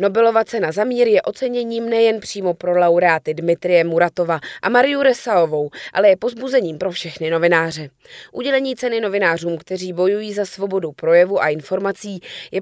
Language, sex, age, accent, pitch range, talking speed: Czech, female, 20-39, native, 175-225 Hz, 145 wpm